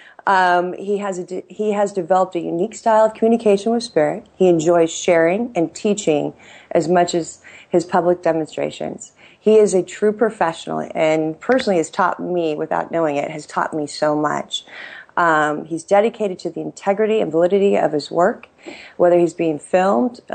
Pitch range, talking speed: 160-200 Hz, 175 wpm